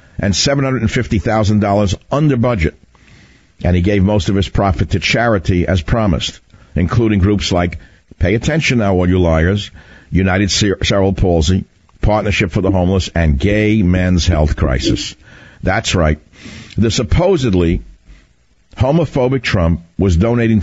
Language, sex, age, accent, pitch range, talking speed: English, male, 60-79, American, 90-115 Hz, 130 wpm